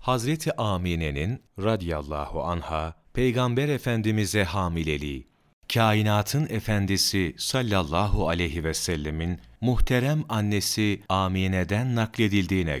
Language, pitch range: Turkish, 90-120 Hz